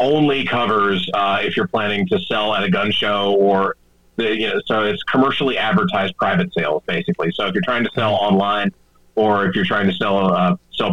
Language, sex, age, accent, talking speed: English, male, 30-49, American, 210 wpm